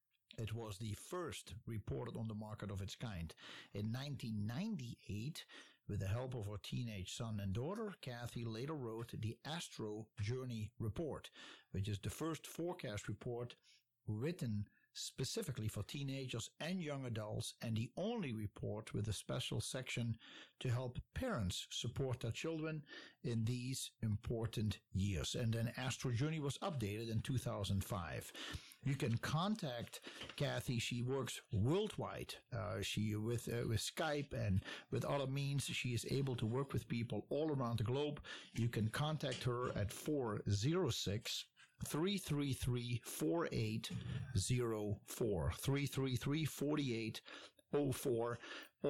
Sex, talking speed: male, 125 wpm